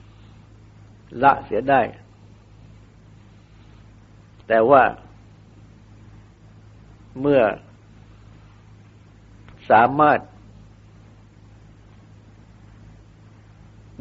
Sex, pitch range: male, 105-110 Hz